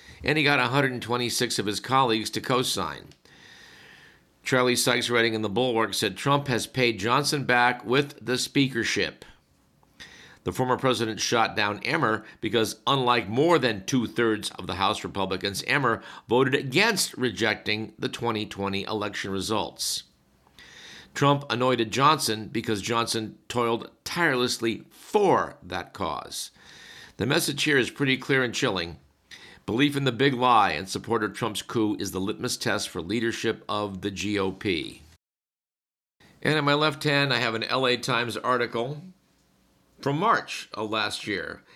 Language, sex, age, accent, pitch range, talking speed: English, male, 50-69, American, 105-125 Hz, 145 wpm